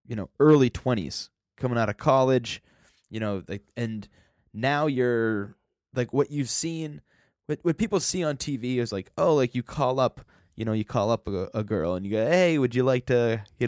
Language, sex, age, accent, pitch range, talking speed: English, male, 20-39, American, 105-130 Hz, 210 wpm